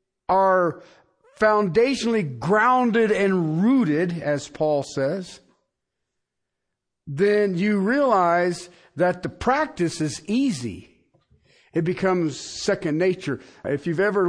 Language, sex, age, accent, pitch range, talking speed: English, male, 50-69, American, 135-190 Hz, 95 wpm